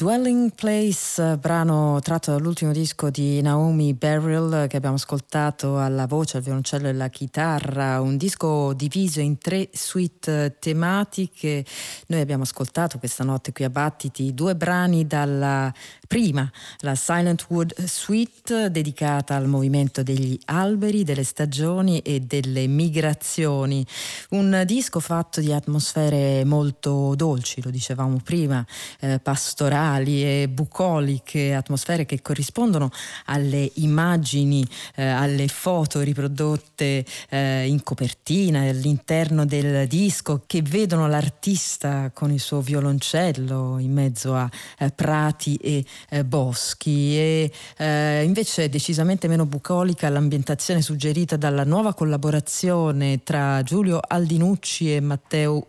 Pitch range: 140-165 Hz